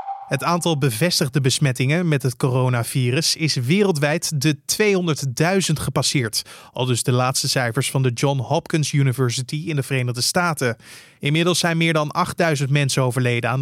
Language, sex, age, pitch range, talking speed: Dutch, male, 20-39, 140-170 Hz, 150 wpm